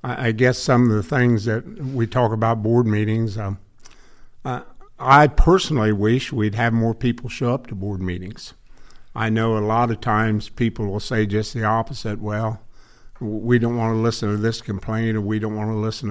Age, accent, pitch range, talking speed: 50-69, American, 105-120 Hz, 200 wpm